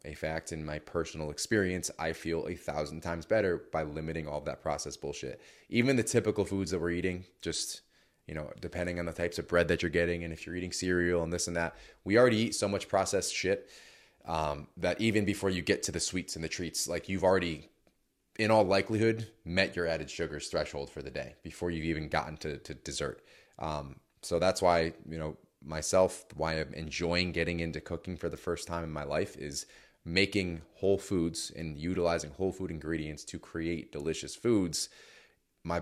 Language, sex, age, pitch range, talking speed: English, male, 20-39, 80-90 Hz, 205 wpm